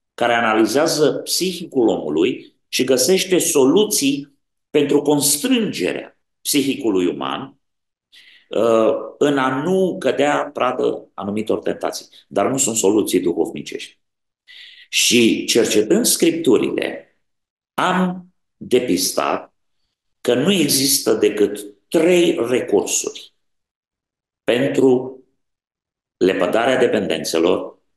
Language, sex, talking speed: Romanian, male, 80 wpm